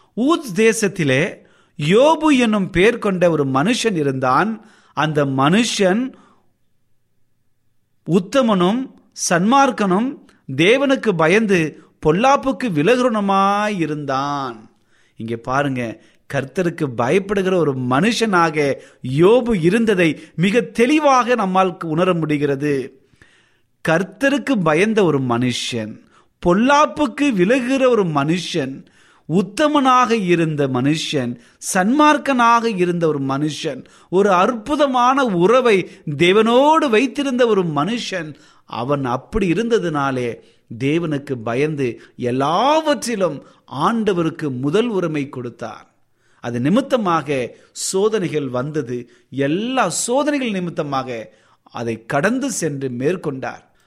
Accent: native